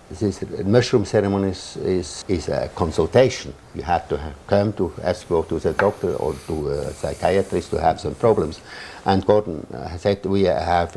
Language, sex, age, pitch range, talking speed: English, male, 60-79, 90-110 Hz, 175 wpm